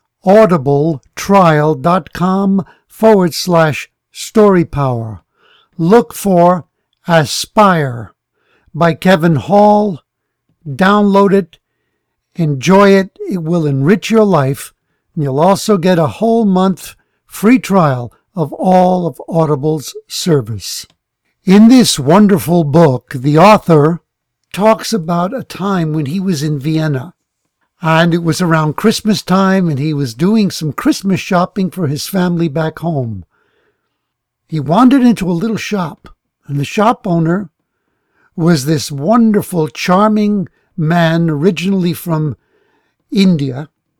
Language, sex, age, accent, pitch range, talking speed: English, male, 60-79, American, 150-195 Hz, 115 wpm